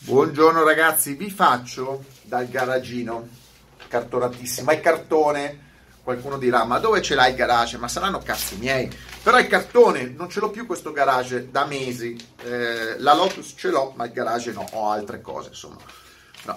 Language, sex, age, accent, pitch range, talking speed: Italian, male, 30-49, native, 125-170 Hz, 170 wpm